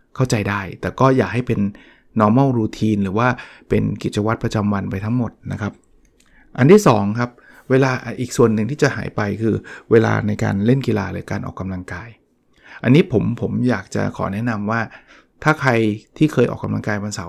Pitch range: 105-130 Hz